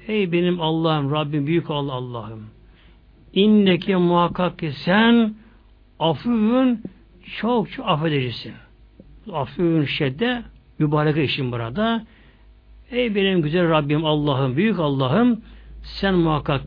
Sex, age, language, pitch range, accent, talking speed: male, 60-79, Turkish, 135-210 Hz, native, 100 wpm